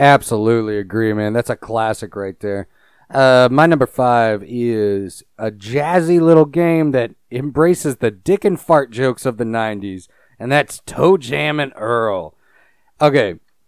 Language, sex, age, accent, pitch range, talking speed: English, male, 40-59, American, 115-150 Hz, 150 wpm